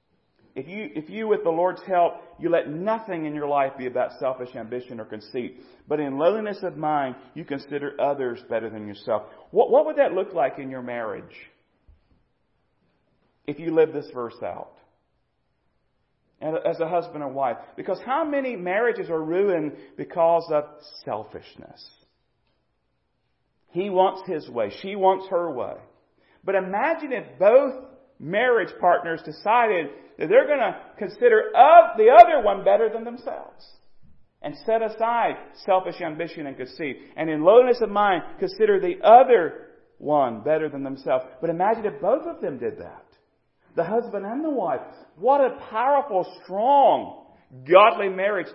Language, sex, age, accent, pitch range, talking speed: English, male, 40-59, American, 155-235 Hz, 155 wpm